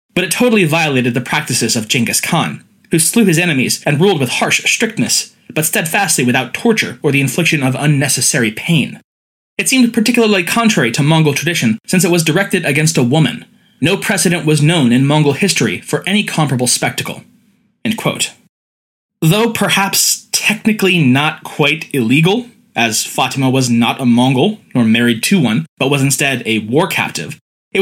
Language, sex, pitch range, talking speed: English, male, 130-175 Hz, 165 wpm